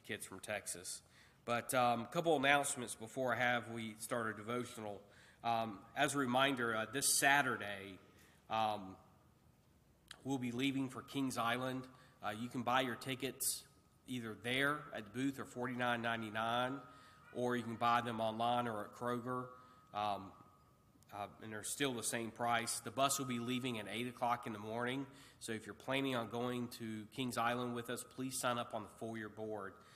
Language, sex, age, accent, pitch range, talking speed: English, male, 40-59, American, 110-130 Hz, 175 wpm